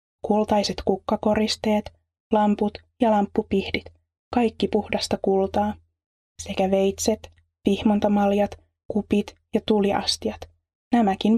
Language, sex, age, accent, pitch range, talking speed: Finnish, female, 20-39, native, 190-215 Hz, 80 wpm